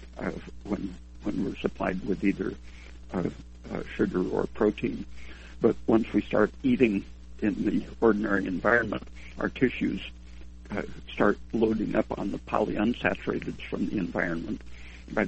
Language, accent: English, American